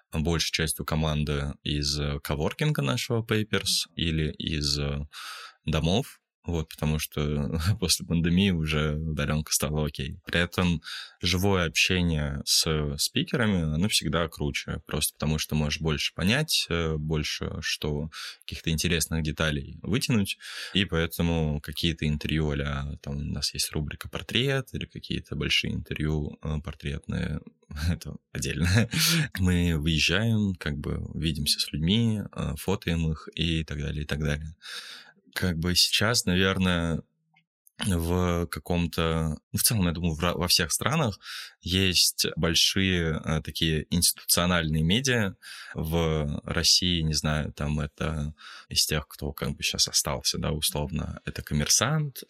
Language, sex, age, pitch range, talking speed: Russian, male, 20-39, 75-90 Hz, 125 wpm